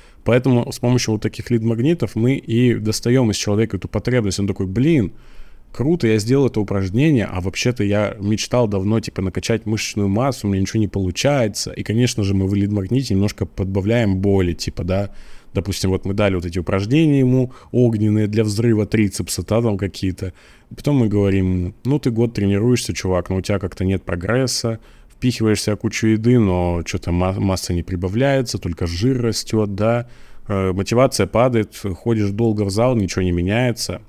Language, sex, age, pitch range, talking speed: Russian, male, 20-39, 95-120 Hz, 165 wpm